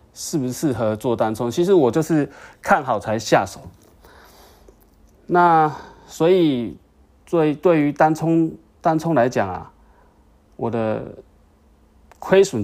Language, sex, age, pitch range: Chinese, male, 30-49, 100-145 Hz